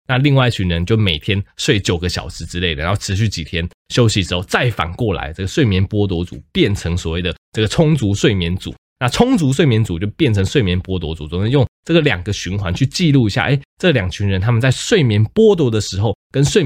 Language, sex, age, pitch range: Chinese, male, 20-39, 90-120 Hz